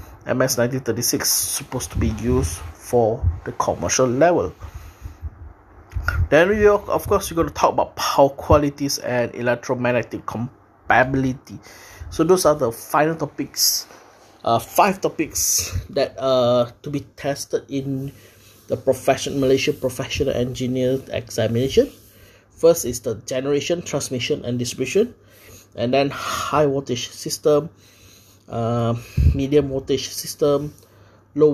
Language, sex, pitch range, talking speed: English, male, 105-135 Hz, 120 wpm